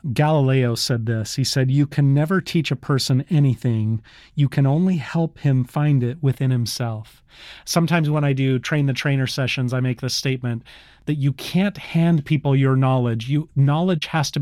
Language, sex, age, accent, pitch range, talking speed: English, male, 30-49, American, 130-165 Hz, 185 wpm